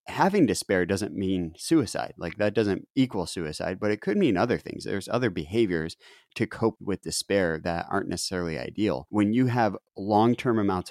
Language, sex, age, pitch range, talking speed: English, male, 30-49, 85-105 Hz, 175 wpm